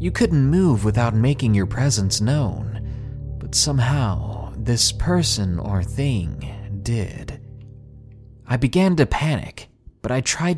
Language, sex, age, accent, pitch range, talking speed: English, male, 30-49, American, 105-140 Hz, 125 wpm